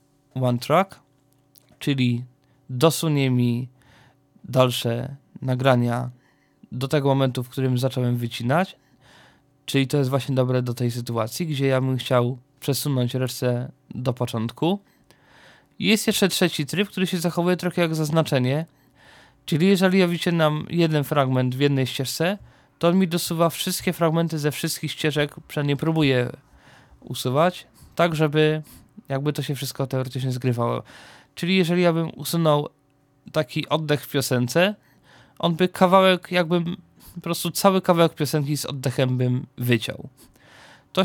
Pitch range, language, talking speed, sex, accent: 130-170 Hz, Polish, 135 wpm, male, native